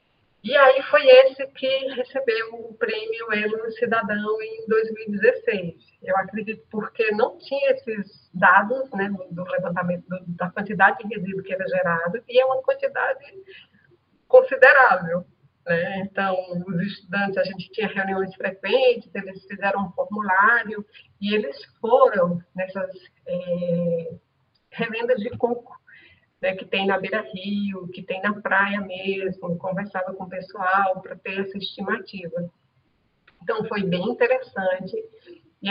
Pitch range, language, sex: 185-240 Hz, Portuguese, female